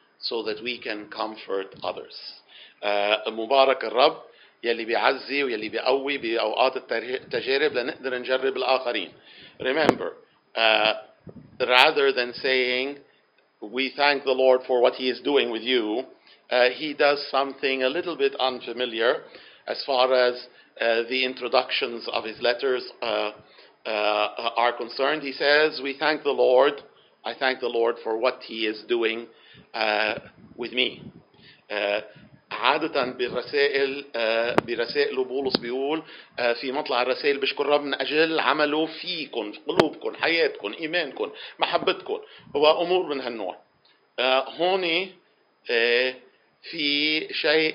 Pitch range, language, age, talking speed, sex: 115-155 Hz, English, 50-69, 120 wpm, male